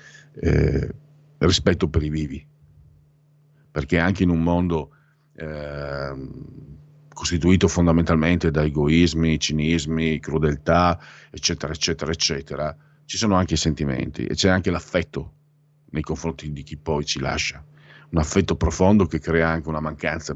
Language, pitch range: Italian, 75-95 Hz